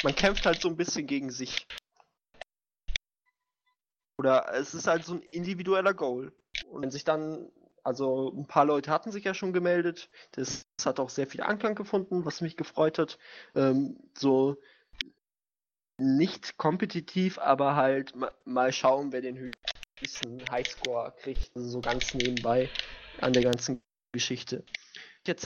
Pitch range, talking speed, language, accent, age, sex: 125-165 Hz, 145 wpm, German, German, 20-39, male